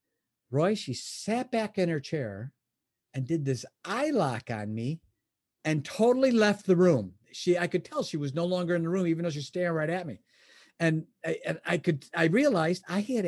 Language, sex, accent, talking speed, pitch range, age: English, male, American, 210 wpm, 120-185 Hz, 50-69